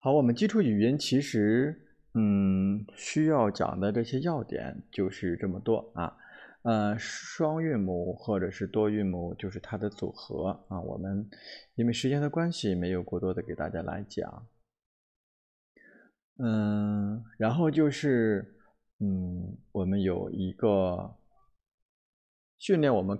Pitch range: 95-115 Hz